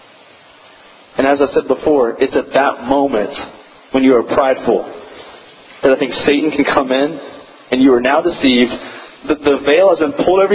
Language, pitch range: English, 145-210 Hz